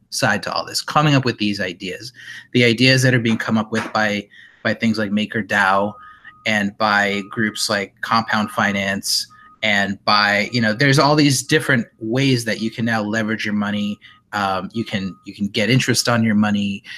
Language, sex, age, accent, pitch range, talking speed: English, male, 30-49, American, 105-130 Hz, 190 wpm